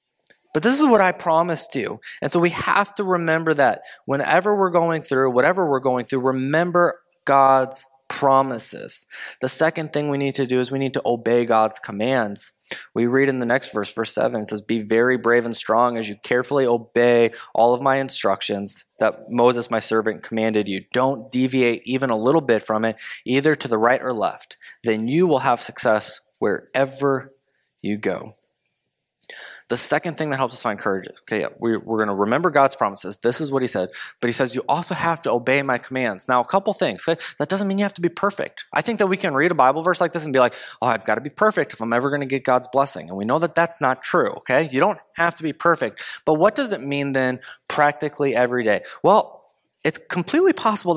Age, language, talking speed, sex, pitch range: 20-39, English, 220 wpm, male, 120-160 Hz